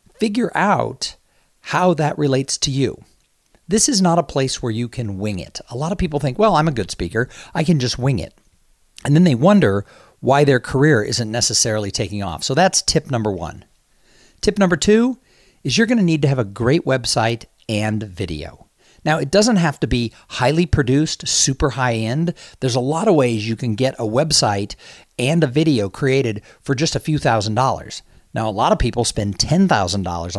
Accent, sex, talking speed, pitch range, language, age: American, male, 195 wpm, 115-155 Hz, English, 50-69